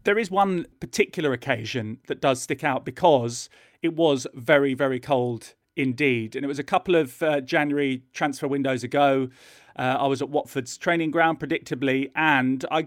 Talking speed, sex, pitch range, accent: 175 wpm, male, 130-165 Hz, British